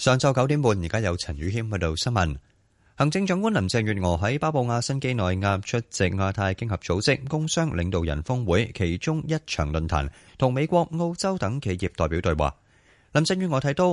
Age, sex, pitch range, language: 20-39, male, 95-135 Hz, Chinese